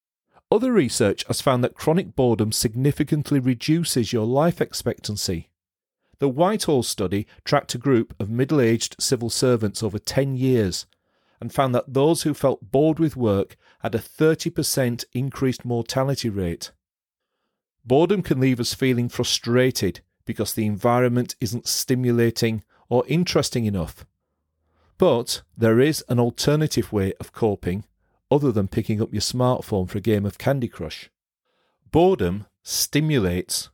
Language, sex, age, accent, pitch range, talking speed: English, male, 40-59, British, 105-135 Hz, 135 wpm